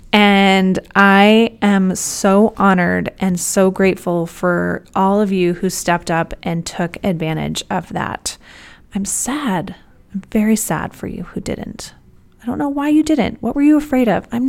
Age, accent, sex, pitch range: 30-49, American, female, 180-235 Hz